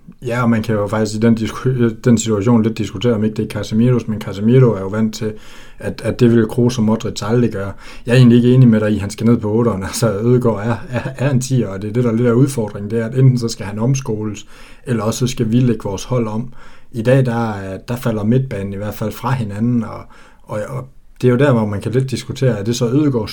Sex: male